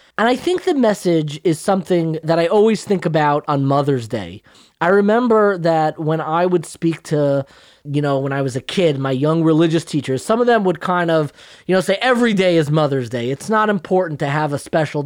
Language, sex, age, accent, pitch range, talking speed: English, male, 20-39, American, 140-195 Hz, 220 wpm